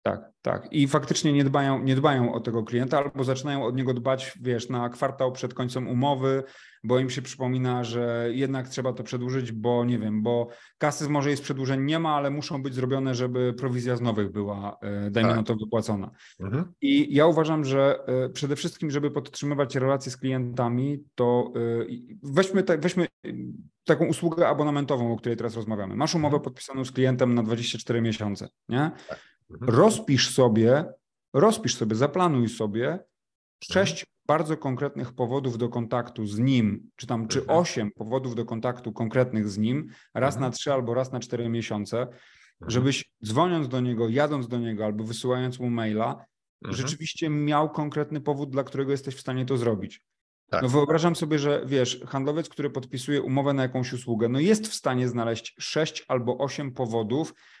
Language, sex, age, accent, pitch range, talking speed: Polish, male, 30-49, native, 120-145 Hz, 165 wpm